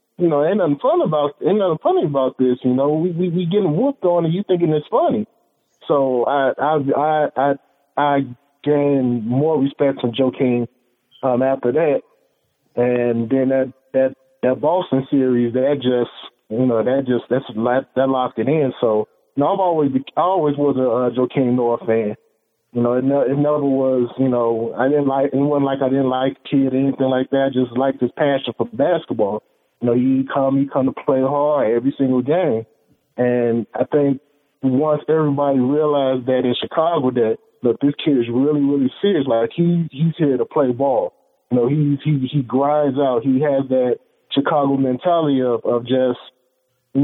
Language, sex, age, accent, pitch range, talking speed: English, male, 20-39, American, 125-145 Hz, 195 wpm